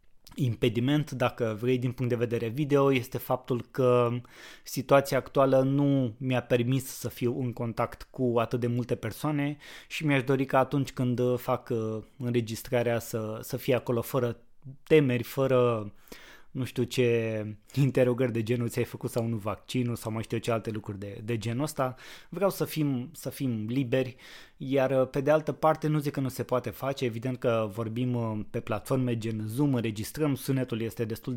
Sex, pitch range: male, 115-135 Hz